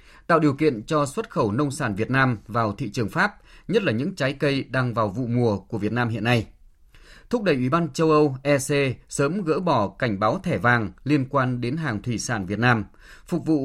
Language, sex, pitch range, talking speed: Vietnamese, male, 115-150 Hz, 230 wpm